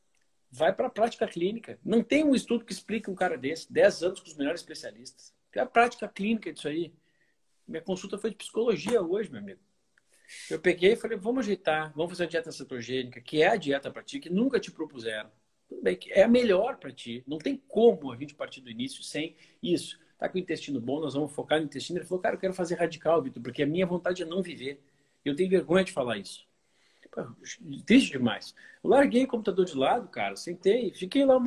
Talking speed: 225 wpm